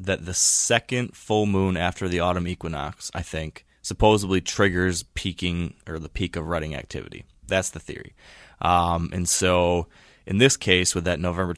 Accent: American